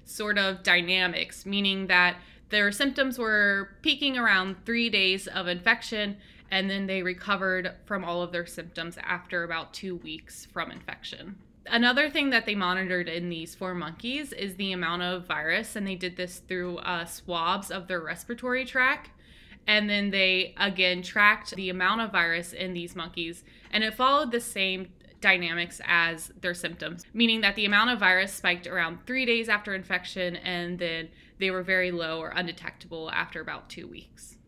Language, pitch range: English, 175-215 Hz